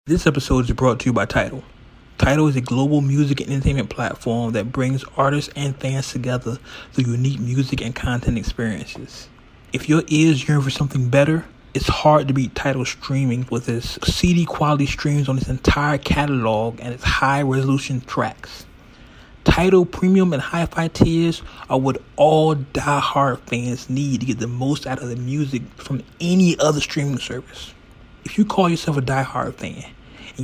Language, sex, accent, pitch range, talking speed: English, male, American, 120-150 Hz, 170 wpm